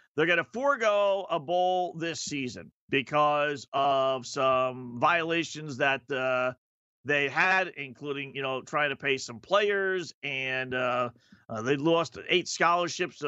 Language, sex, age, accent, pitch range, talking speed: English, male, 40-59, American, 135-175 Hz, 140 wpm